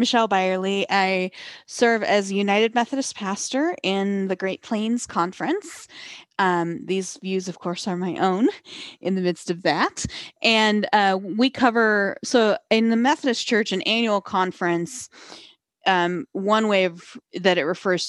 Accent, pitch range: American, 185-245 Hz